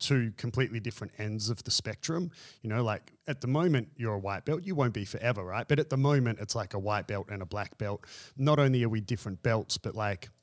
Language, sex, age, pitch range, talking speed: English, male, 30-49, 105-130 Hz, 245 wpm